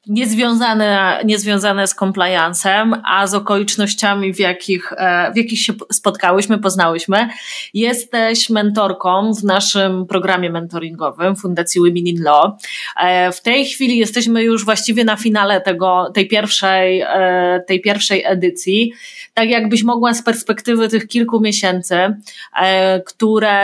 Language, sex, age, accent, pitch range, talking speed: Polish, female, 20-39, native, 185-215 Hz, 120 wpm